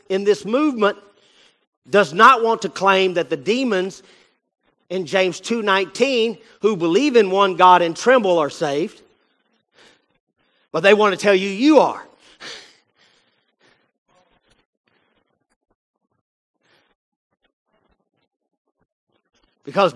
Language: English